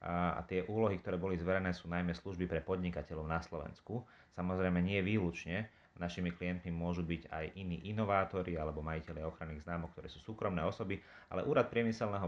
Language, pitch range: Slovak, 85-95 Hz